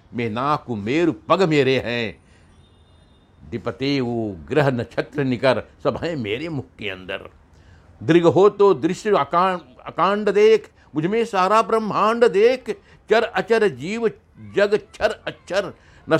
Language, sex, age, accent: Hindi, male, 60-79, native